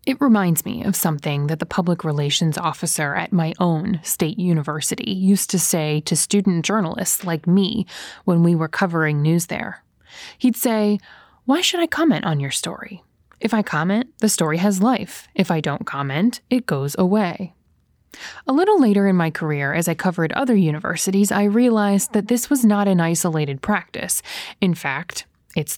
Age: 20-39